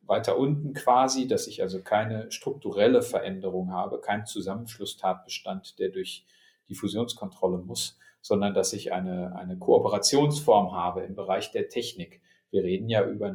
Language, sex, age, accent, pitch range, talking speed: German, male, 40-59, German, 100-125 Hz, 145 wpm